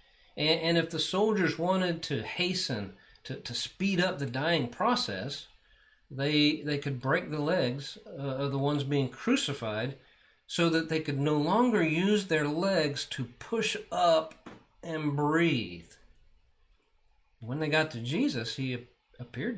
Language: English